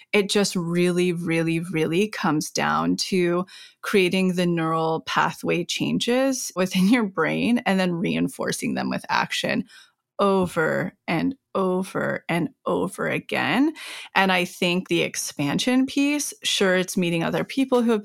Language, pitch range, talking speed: English, 180-235 Hz, 135 wpm